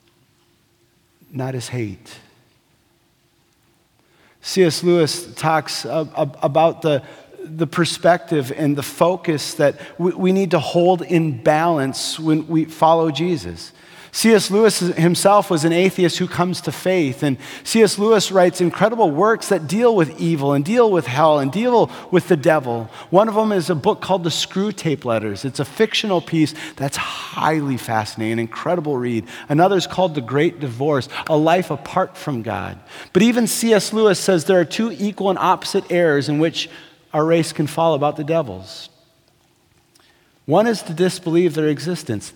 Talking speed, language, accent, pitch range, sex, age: 155 wpm, English, American, 145-180 Hz, male, 40-59